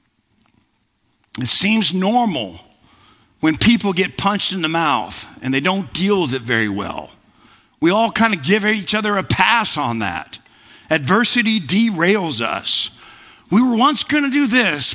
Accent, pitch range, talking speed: American, 165-240 Hz, 155 wpm